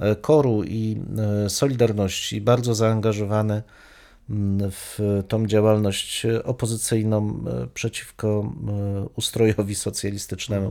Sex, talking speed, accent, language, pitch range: male, 65 wpm, native, Polish, 100-120 Hz